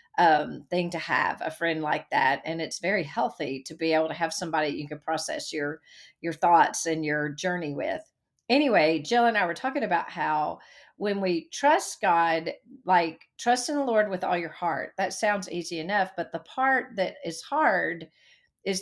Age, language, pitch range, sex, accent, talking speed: 40-59, English, 165-210 Hz, female, American, 190 wpm